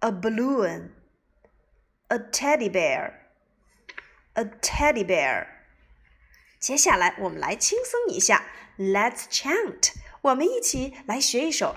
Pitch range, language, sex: 205-340 Hz, Chinese, female